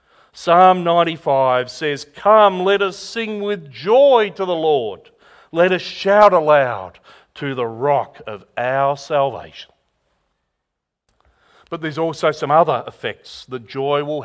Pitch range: 140-200 Hz